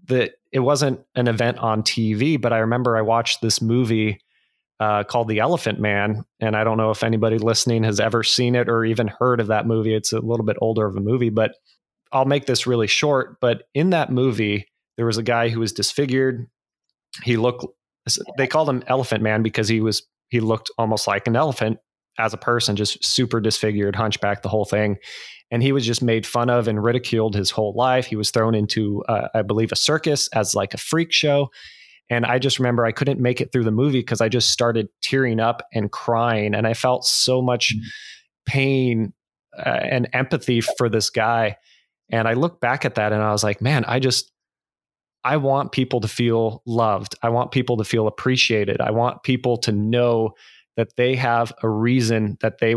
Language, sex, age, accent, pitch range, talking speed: English, male, 30-49, American, 110-125 Hz, 205 wpm